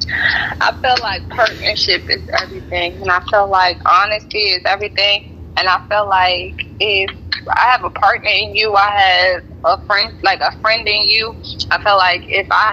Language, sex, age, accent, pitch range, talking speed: English, female, 20-39, American, 190-235 Hz, 180 wpm